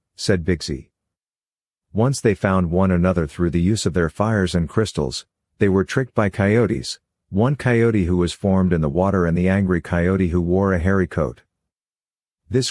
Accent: American